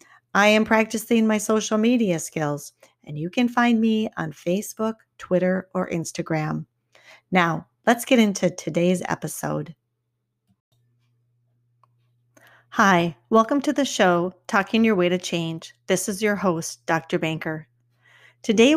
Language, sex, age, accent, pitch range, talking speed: English, female, 40-59, American, 160-210 Hz, 130 wpm